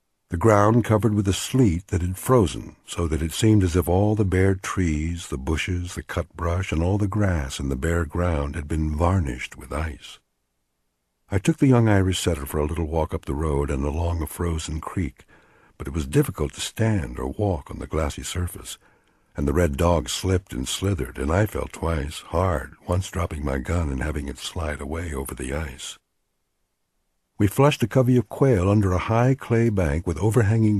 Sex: male